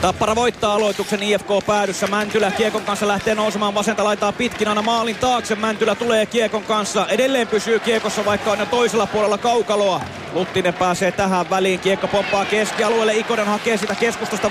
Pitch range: 210-235 Hz